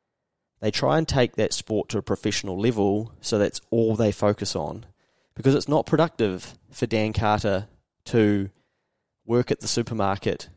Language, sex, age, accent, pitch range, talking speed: English, male, 20-39, Australian, 100-115 Hz, 160 wpm